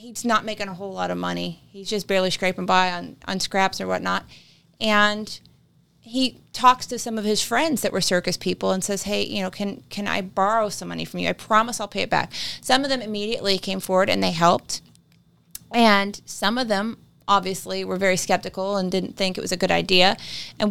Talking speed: 215 wpm